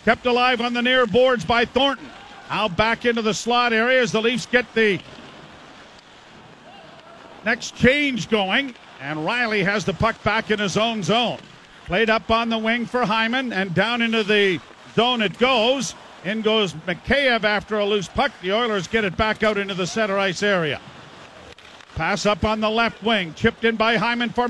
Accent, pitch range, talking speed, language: American, 210-240 Hz, 185 wpm, English